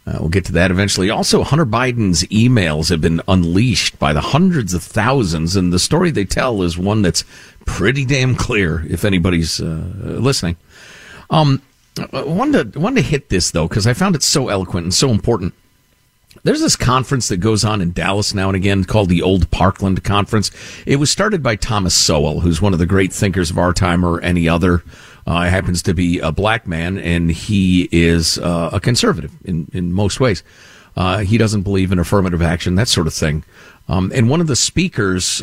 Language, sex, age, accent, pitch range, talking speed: English, male, 50-69, American, 90-115 Hz, 200 wpm